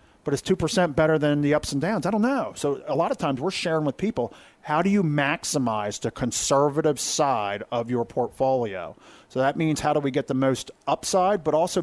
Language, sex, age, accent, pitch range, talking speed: English, male, 40-59, American, 120-150 Hz, 220 wpm